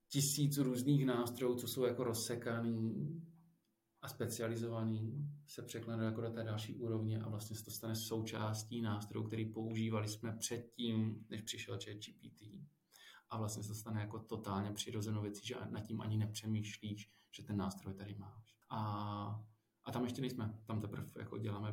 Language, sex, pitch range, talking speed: Czech, male, 105-115 Hz, 165 wpm